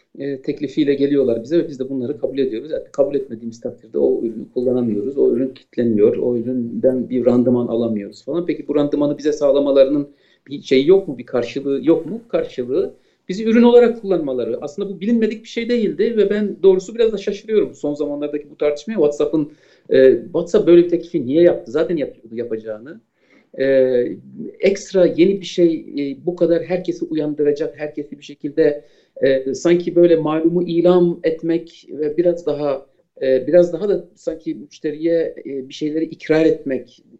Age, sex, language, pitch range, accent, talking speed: 50-69, male, Turkish, 140-180 Hz, native, 165 wpm